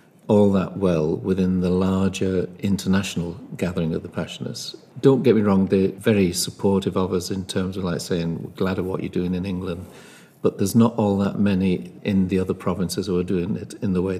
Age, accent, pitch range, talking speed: 50-69, British, 95-105 Hz, 210 wpm